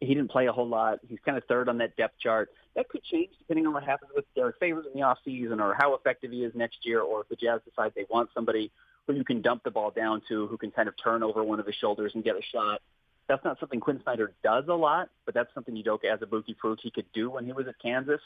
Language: English